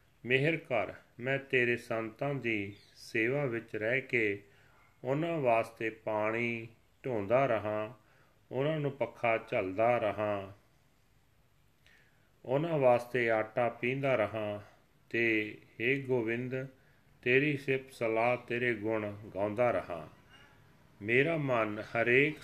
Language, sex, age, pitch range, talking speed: Punjabi, male, 40-59, 110-130 Hz, 100 wpm